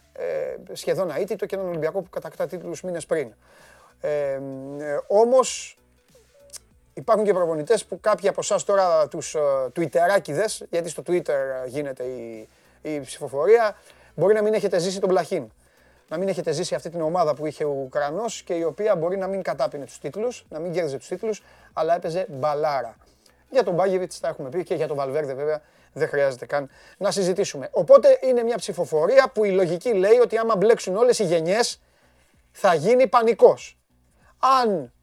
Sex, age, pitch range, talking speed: male, 30-49, 150-215 Hz, 175 wpm